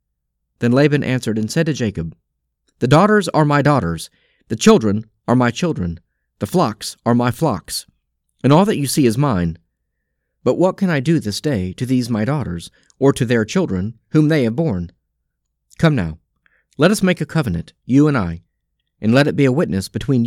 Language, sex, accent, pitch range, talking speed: English, male, American, 85-140 Hz, 190 wpm